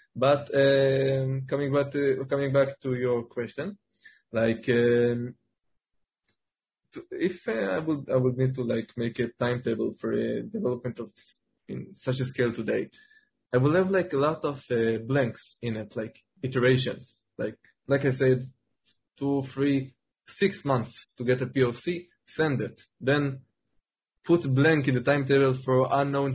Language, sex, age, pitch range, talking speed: English, male, 20-39, 125-145 Hz, 160 wpm